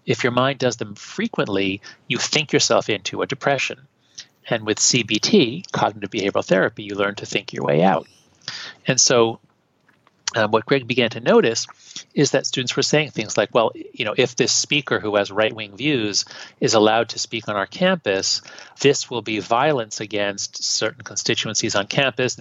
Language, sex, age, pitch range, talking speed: English, male, 40-59, 105-140 Hz, 175 wpm